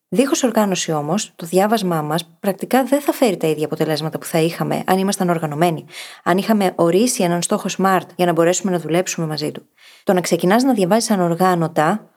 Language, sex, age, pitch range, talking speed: Greek, female, 20-39, 165-195 Hz, 190 wpm